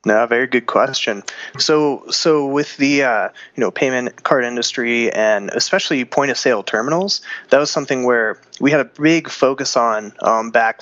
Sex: male